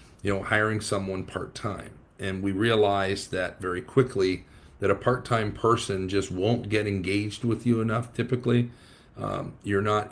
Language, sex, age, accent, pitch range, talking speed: English, male, 40-59, American, 95-115 Hz, 155 wpm